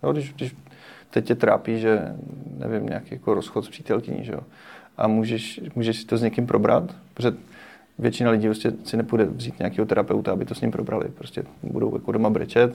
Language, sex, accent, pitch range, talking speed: Czech, male, native, 110-120 Hz, 195 wpm